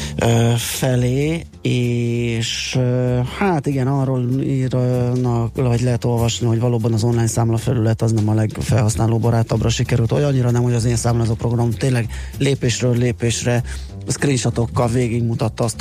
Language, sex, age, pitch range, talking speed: Hungarian, male, 20-39, 110-125 Hz, 140 wpm